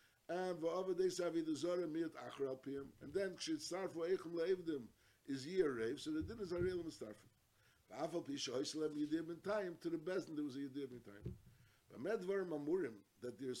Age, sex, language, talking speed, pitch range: 50-69, male, English, 175 wpm, 140-185 Hz